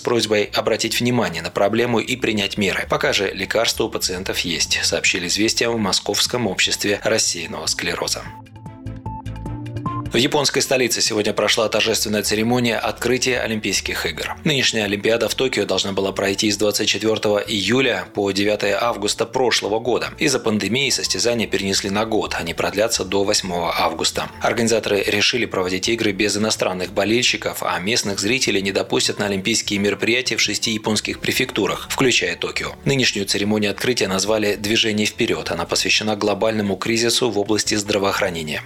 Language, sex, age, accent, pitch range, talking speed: Russian, male, 20-39, native, 100-120 Hz, 145 wpm